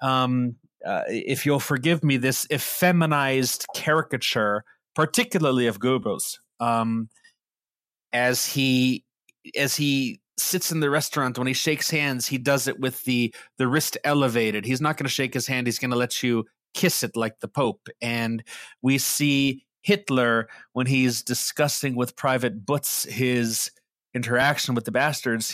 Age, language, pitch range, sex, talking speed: 30-49, English, 125-155 Hz, male, 155 wpm